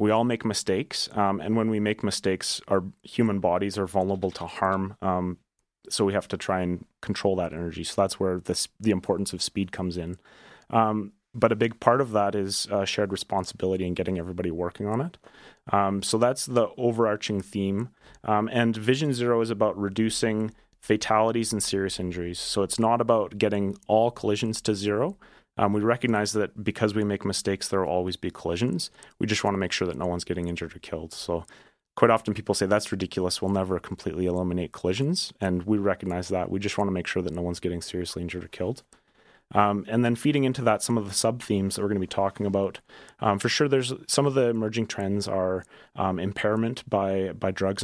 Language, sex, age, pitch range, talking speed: English, male, 30-49, 95-110 Hz, 210 wpm